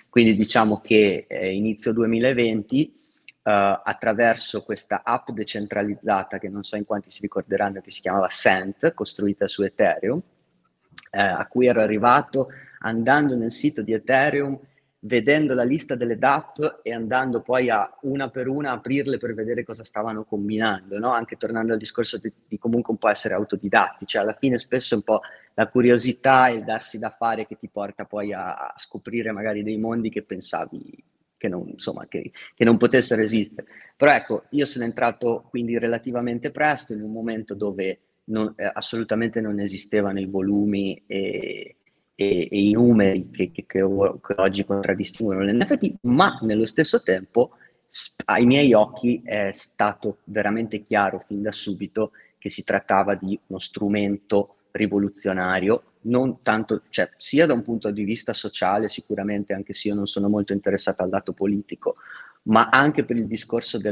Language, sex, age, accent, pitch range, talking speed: Italian, male, 30-49, native, 100-120 Hz, 165 wpm